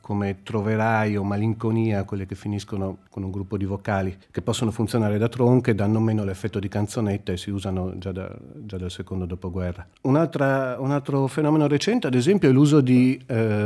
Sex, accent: male, native